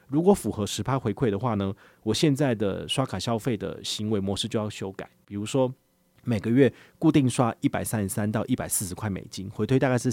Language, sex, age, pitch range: Chinese, male, 30-49, 100-130 Hz